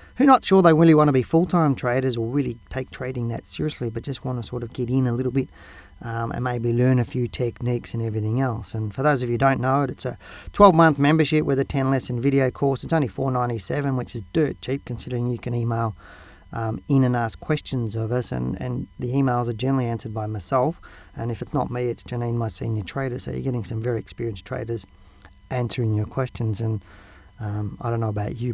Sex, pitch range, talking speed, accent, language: male, 115-135 Hz, 240 wpm, Australian, English